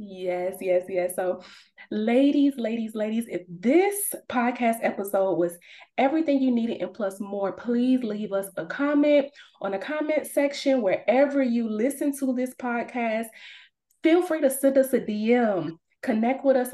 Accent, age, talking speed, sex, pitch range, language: American, 20-39, 155 wpm, female, 195-260 Hz, English